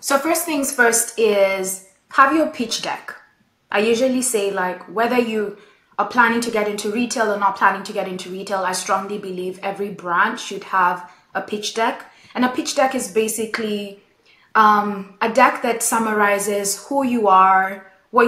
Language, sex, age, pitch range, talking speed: English, female, 20-39, 195-235 Hz, 175 wpm